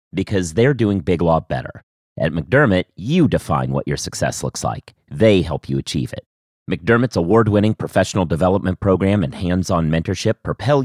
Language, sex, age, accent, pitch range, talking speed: English, male, 30-49, American, 90-115 Hz, 160 wpm